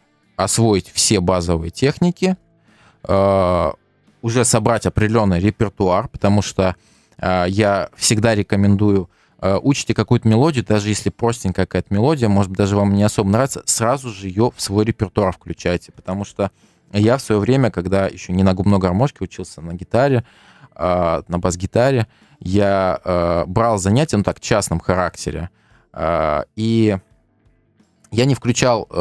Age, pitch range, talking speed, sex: 20-39, 95-115 Hz, 145 wpm, male